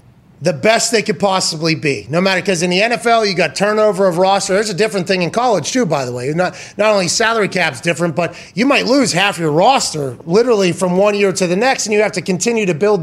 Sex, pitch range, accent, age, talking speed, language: male, 180-225 Hz, American, 30-49, 250 wpm, English